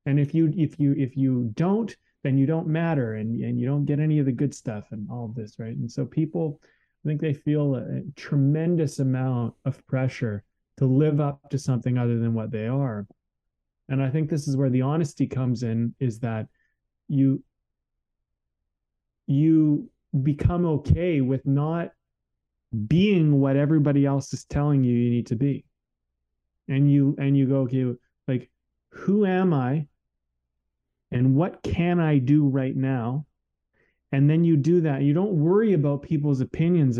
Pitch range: 120-150 Hz